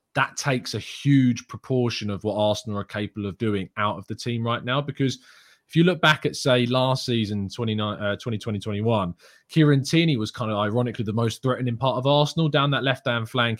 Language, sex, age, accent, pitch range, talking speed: English, male, 20-39, British, 105-125 Hz, 205 wpm